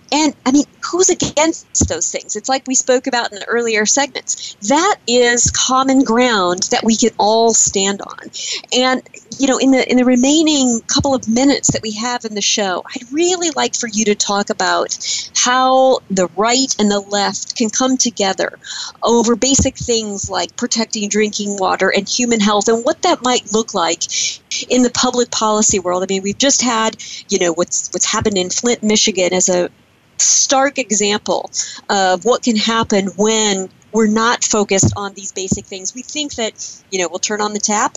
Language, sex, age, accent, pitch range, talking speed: English, female, 40-59, American, 205-260 Hz, 190 wpm